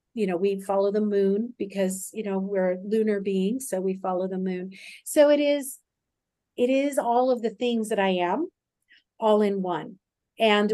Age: 40-59